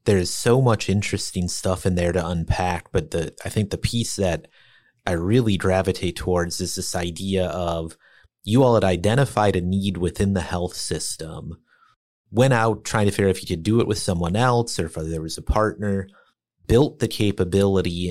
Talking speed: 190 wpm